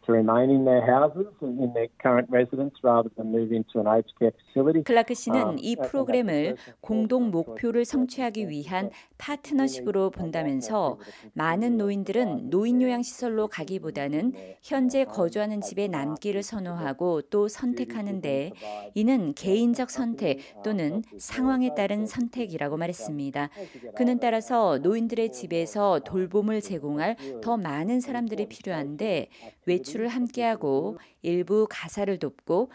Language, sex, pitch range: Korean, female, 160-240 Hz